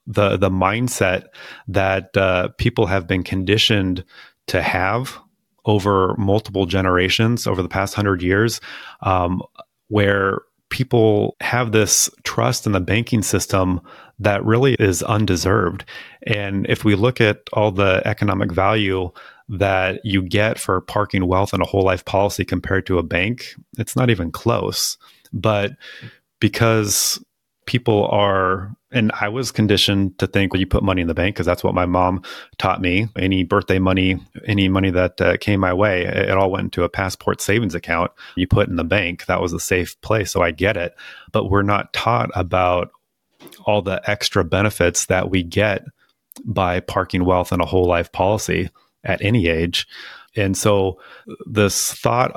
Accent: American